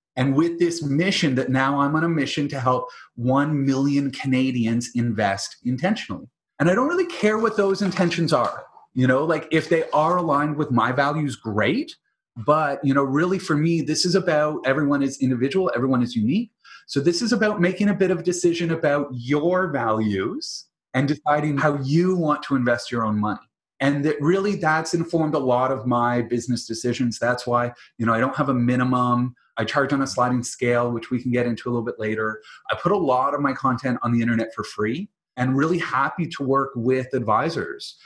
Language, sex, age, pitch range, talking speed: English, male, 30-49, 120-155 Hz, 205 wpm